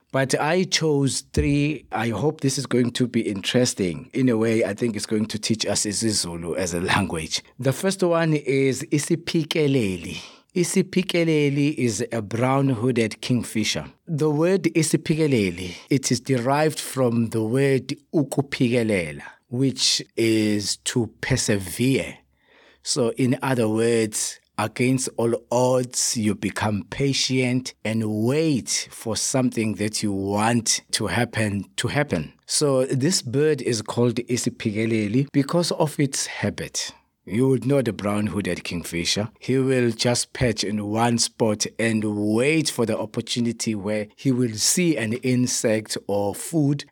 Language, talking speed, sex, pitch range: English, 140 wpm, male, 110-140 Hz